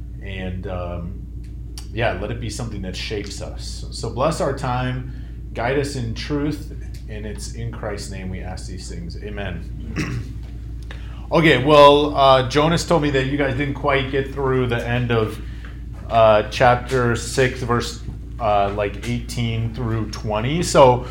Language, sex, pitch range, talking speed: English, male, 100-135 Hz, 155 wpm